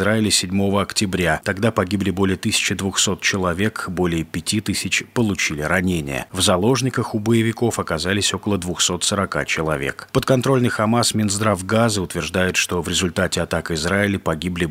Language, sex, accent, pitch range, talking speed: Russian, male, native, 90-115 Hz, 120 wpm